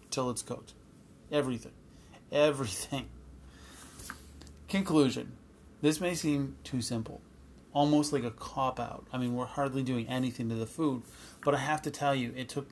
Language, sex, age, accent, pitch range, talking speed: English, male, 30-49, American, 115-135 Hz, 150 wpm